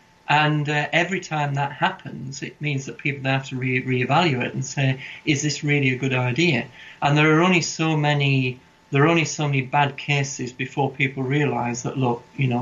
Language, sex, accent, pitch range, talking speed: English, male, British, 130-155 Hz, 200 wpm